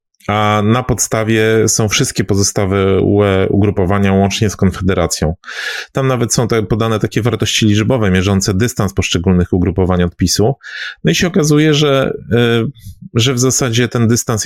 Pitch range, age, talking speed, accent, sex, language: 95-115 Hz, 30-49, 135 wpm, native, male, Polish